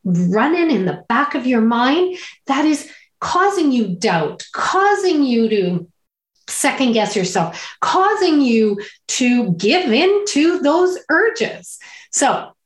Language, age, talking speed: English, 40-59, 130 wpm